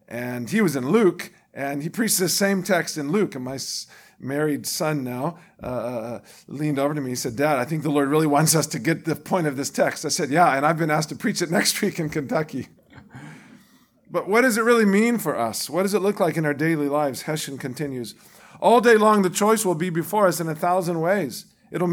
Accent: American